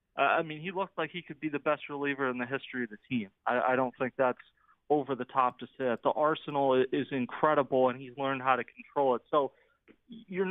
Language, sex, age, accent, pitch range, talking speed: English, male, 30-49, American, 135-155 Hz, 240 wpm